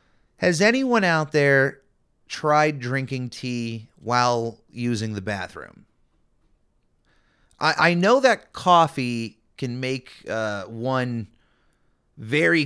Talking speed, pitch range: 100 wpm, 110-150 Hz